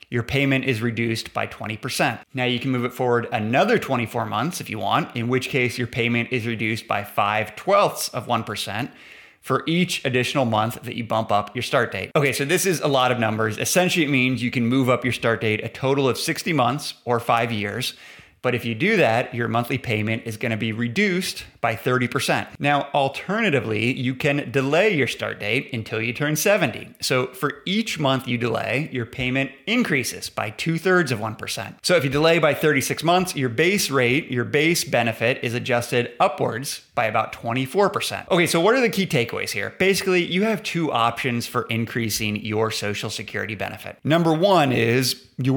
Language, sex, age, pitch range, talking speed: English, male, 30-49, 115-150 Hz, 200 wpm